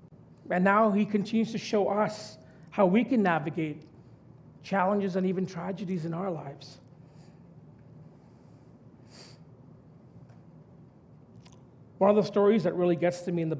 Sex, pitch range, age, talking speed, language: male, 150-195 Hz, 40-59, 130 wpm, English